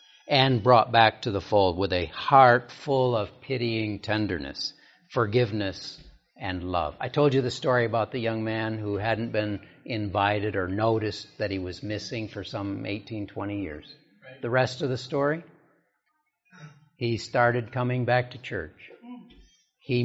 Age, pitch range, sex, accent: 60-79, 105-145 Hz, male, American